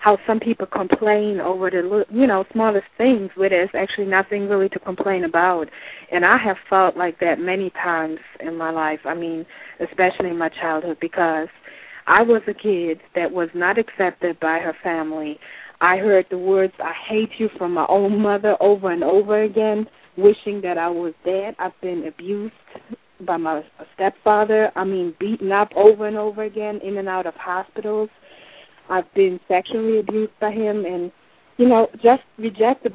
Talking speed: 175 wpm